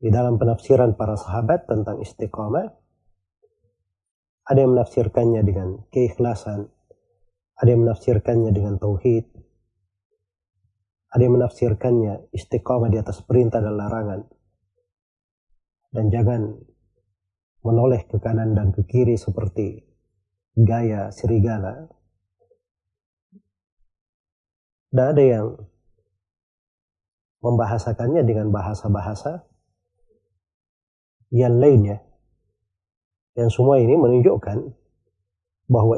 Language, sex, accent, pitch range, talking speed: Indonesian, male, native, 95-120 Hz, 85 wpm